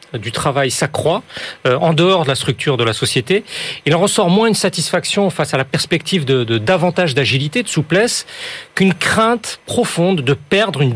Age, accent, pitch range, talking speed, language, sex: 40-59, French, 140-190 Hz, 185 wpm, French, male